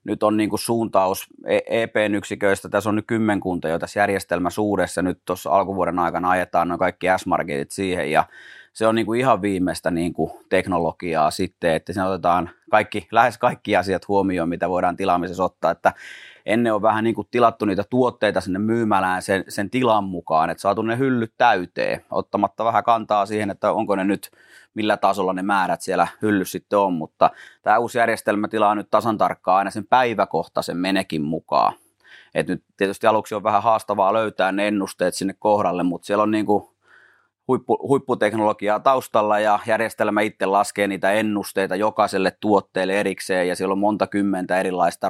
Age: 30-49